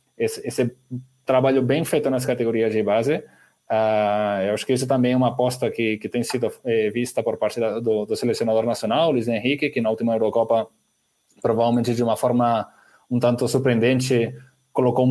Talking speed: 180 wpm